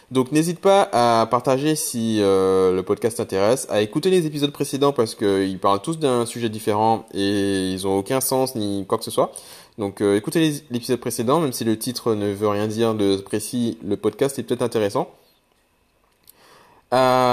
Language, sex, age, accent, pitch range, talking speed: French, male, 20-39, French, 100-125 Hz, 185 wpm